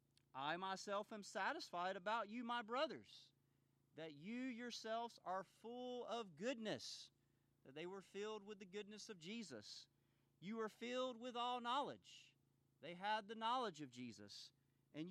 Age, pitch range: 40-59, 140-225 Hz